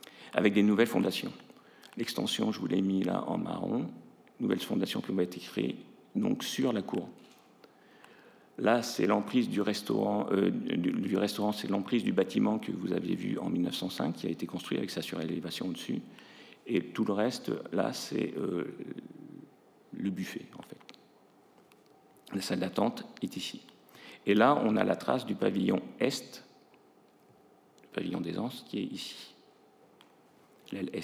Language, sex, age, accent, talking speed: French, male, 50-69, French, 160 wpm